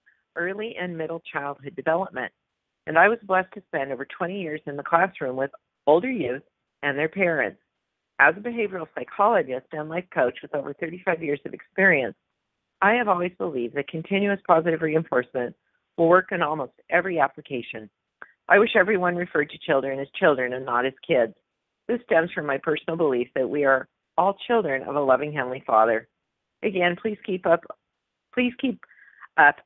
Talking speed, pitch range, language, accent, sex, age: 170 wpm, 135-185 Hz, English, American, female, 40-59